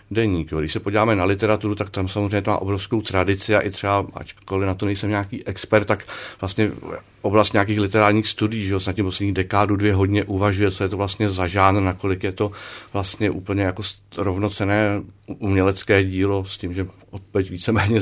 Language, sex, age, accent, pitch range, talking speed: Czech, male, 40-59, native, 100-110 Hz, 185 wpm